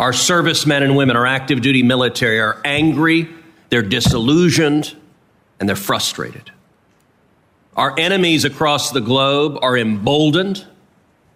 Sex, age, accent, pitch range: male, 50-69, American, 135-175 Hz